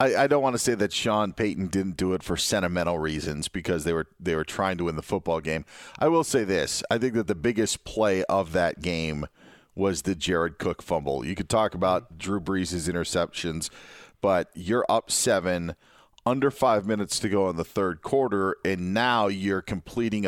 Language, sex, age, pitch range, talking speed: English, male, 40-59, 95-120 Hz, 200 wpm